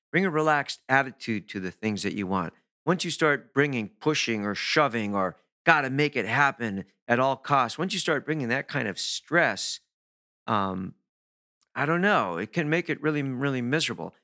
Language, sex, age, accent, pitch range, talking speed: English, male, 50-69, American, 100-135 Hz, 190 wpm